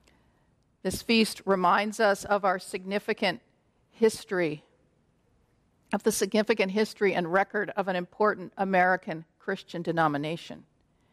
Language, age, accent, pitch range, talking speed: English, 50-69, American, 180-215 Hz, 110 wpm